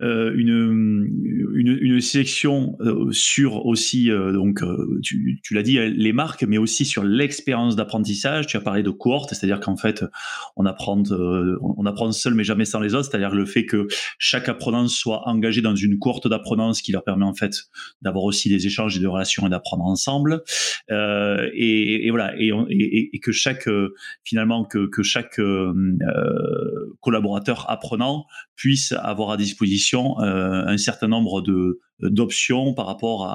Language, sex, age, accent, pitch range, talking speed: French, male, 20-39, French, 100-125 Hz, 170 wpm